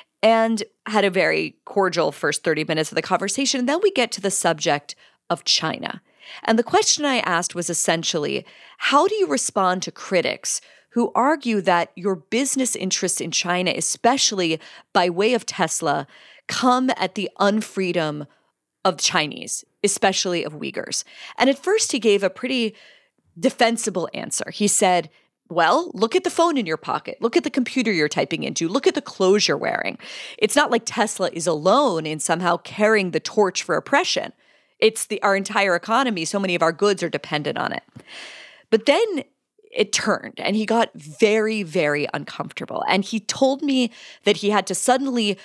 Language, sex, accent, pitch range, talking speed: English, female, American, 180-255 Hz, 175 wpm